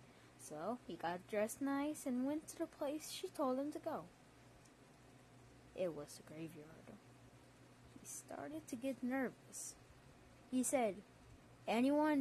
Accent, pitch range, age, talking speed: American, 180-270 Hz, 20-39, 135 wpm